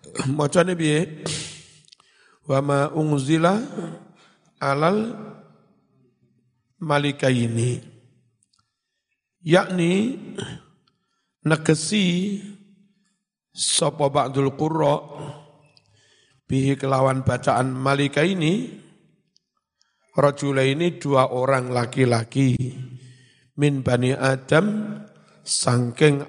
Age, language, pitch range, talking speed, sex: 50-69, Indonesian, 130-175 Hz, 55 wpm, male